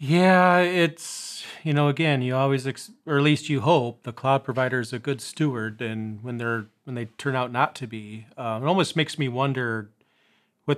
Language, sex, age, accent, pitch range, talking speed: English, male, 40-59, American, 115-145 Hz, 210 wpm